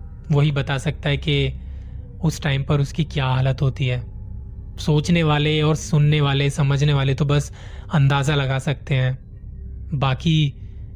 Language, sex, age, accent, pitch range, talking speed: Hindi, male, 30-49, native, 130-150 Hz, 150 wpm